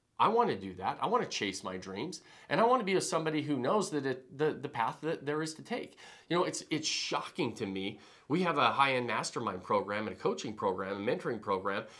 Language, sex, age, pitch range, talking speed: English, male, 40-59, 110-140 Hz, 245 wpm